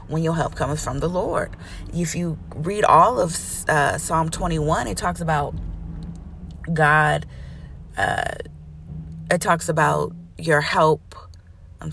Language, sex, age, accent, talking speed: English, female, 30-49, American, 130 wpm